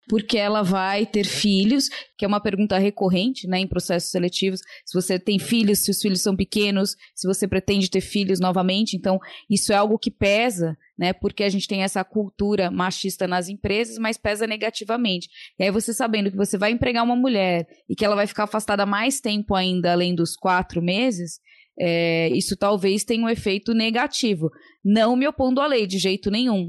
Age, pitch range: 20-39, 195-245 Hz